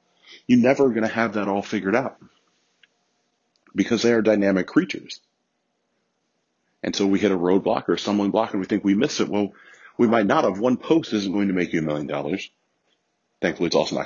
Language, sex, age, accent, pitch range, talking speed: English, male, 40-59, American, 90-110 Hz, 200 wpm